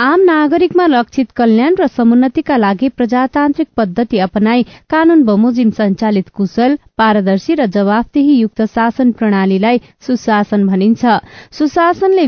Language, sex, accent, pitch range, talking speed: English, female, Indian, 205-275 Hz, 115 wpm